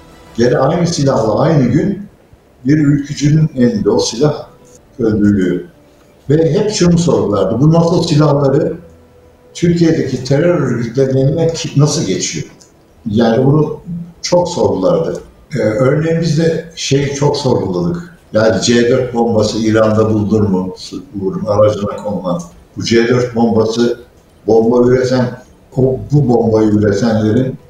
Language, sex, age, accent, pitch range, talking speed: Turkish, male, 60-79, native, 115-150 Hz, 105 wpm